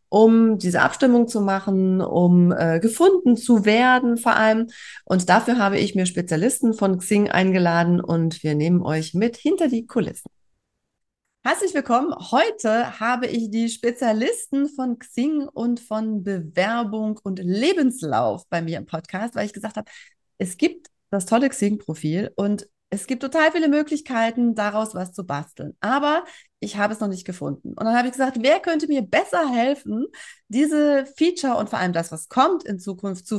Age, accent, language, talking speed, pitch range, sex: 30-49, German, German, 170 wpm, 190-260 Hz, female